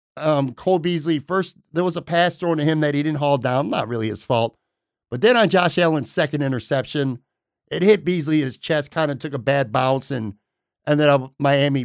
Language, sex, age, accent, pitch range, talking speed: English, male, 50-69, American, 140-170 Hz, 215 wpm